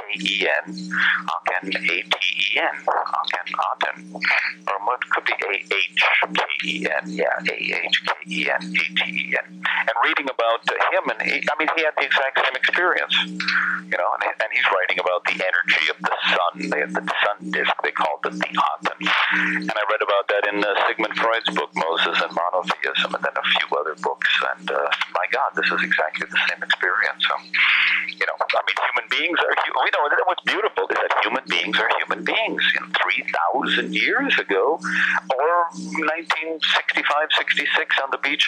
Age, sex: 50-69, male